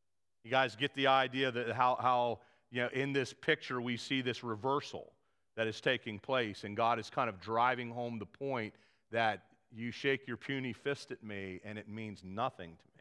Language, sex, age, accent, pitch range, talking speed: English, male, 40-59, American, 110-145 Hz, 205 wpm